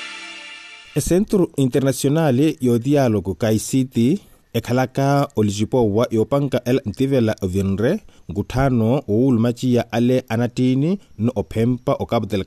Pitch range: 105-130 Hz